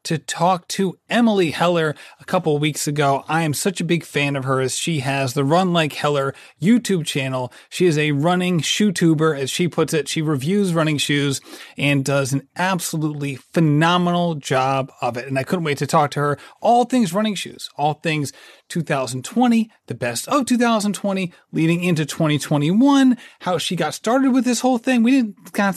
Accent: American